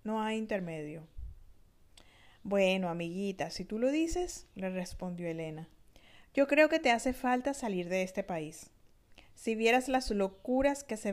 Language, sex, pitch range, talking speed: Spanish, female, 180-250 Hz, 150 wpm